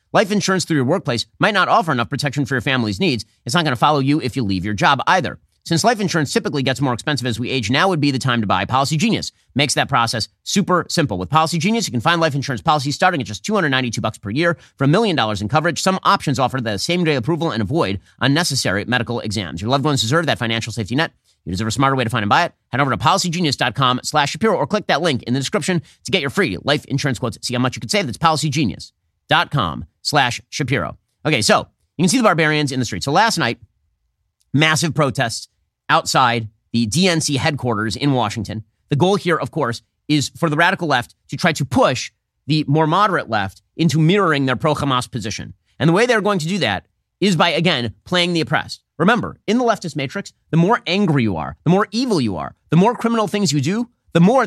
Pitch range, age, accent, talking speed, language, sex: 120-175 Hz, 30-49, American, 240 wpm, English, male